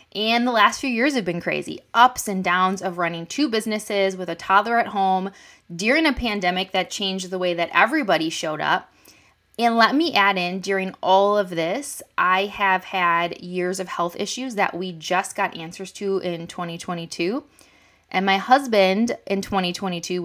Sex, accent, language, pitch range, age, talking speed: female, American, English, 185-235 Hz, 20-39, 180 wpm